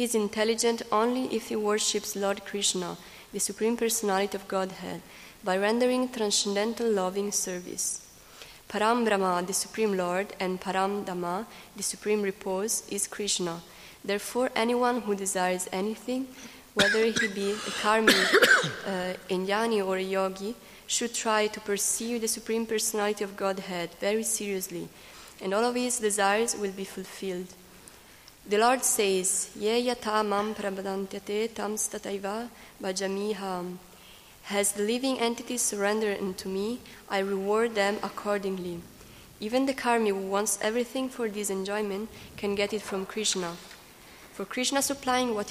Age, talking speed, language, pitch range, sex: 20-39, 135 wpm, Italian, 195-225 Hz, female